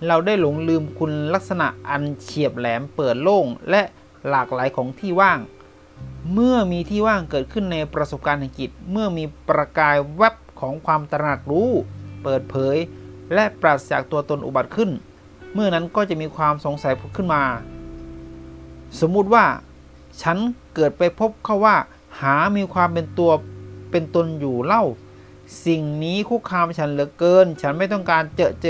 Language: Thai